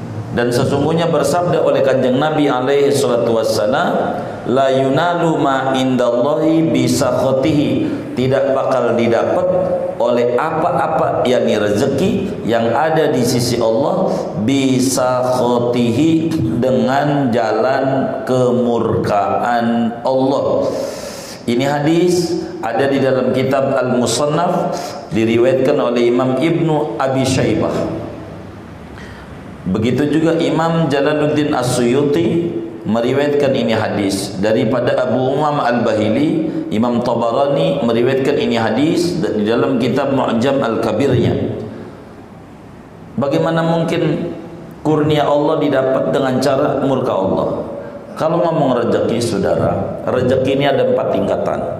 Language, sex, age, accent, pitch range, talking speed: Indonesian, male, 50-69, native, 120-155 Hz, 100 wpm